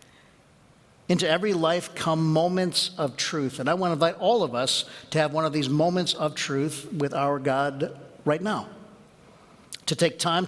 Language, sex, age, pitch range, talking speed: English, male, 50-69, 145-180 Hz, 180 wpm